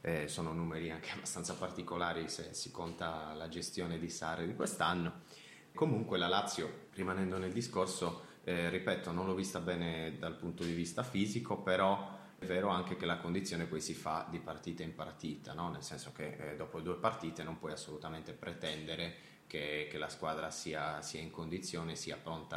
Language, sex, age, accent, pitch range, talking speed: Italian, male, 30-49, native, 80-95 Hz, 180 wpm